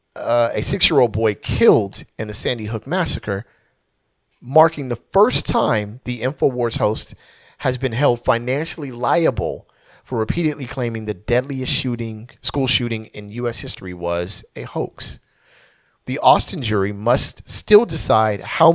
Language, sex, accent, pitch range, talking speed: English, male, American, 110-135 Hz, 140 wpm